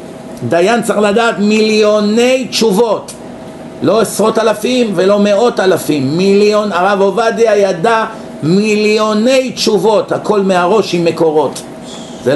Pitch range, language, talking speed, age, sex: 165-215 Hz, Hebrew, 105 wpm, 50-69, male